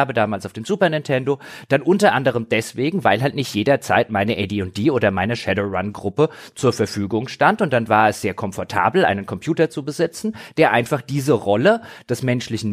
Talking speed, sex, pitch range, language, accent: 175 wpm, male, 110-150 Hz, German, German